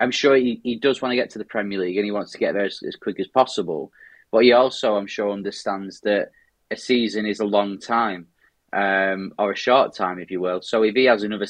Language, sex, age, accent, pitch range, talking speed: English, male, 20-39, British, 100-125 Hz, 255 wpm